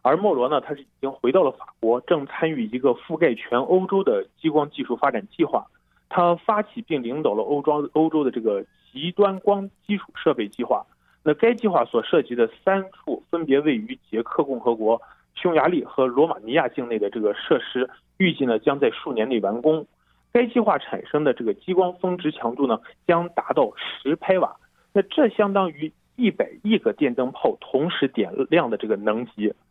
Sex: male